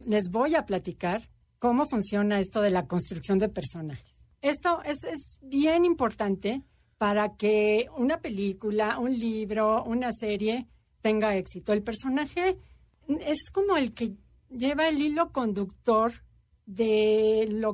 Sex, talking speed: female, 130 wpm